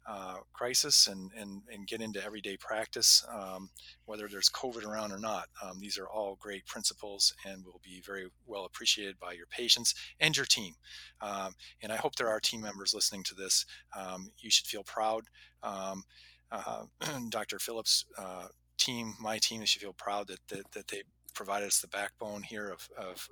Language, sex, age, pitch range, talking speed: English, male, 40-59, 95-115 Hz, 180 wpm